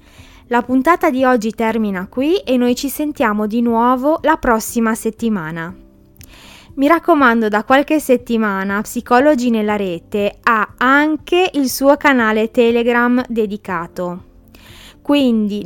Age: 20-39